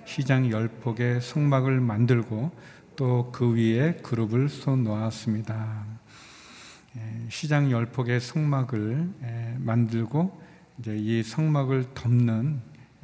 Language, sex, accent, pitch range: Korean, male, native, 115-130 Hz